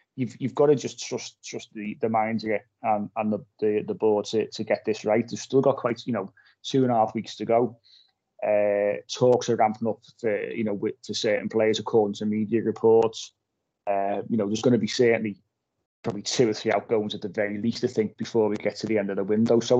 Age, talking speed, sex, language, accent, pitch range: 30-49, 245 wpm, male, English, British, 105-125 Hz